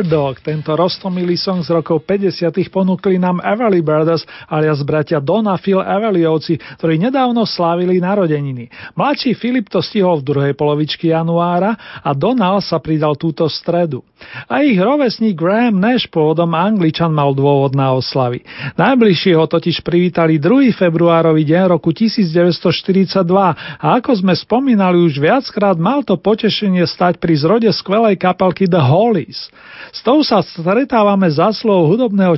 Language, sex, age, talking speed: Slovak, male, 40-59, 145 wpm